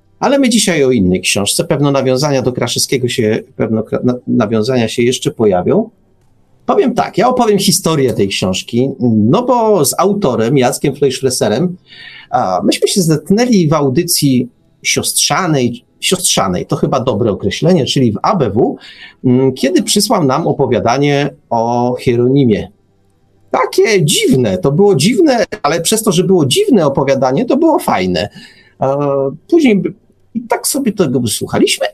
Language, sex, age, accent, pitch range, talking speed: Polish, male, 40-59, native, 125-195 Hz, 135 wpm